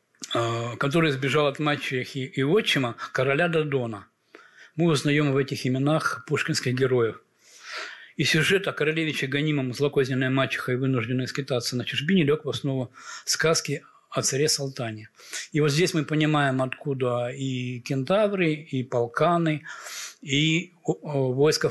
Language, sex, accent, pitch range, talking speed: Russian, male, native, 130-155 Hz, 125 wpm